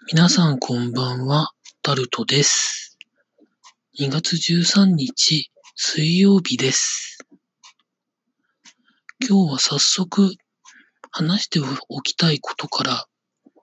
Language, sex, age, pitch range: Japanese, male, 40-59, 140-200 Hz